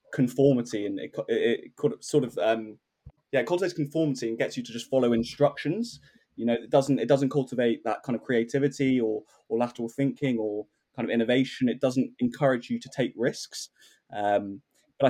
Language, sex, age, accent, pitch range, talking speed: English, male, 20-39, British, 110-135 Hz, 180 wpm